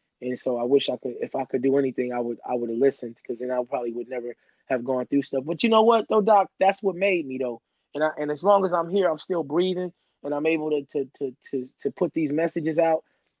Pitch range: 130-165 Hz